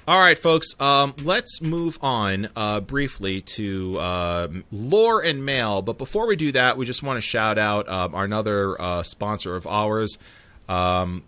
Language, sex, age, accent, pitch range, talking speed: English, male, 30-49, American, 90-125 Hz, 175 wpm